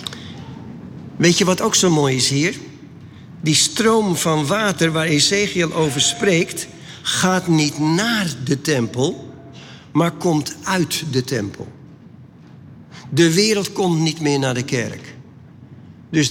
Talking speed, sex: 130 wpm, male